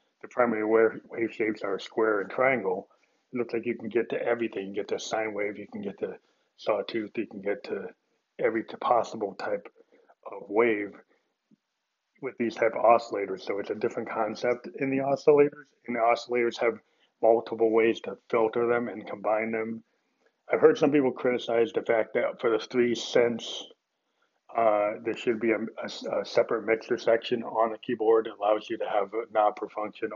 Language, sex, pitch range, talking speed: English, male, 110-130 Hz, 185 wpm